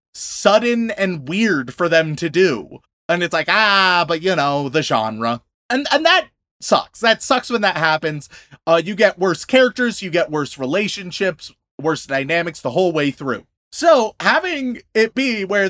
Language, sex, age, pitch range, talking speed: English, male, 20-39, 160-225 Hz, 170 wpm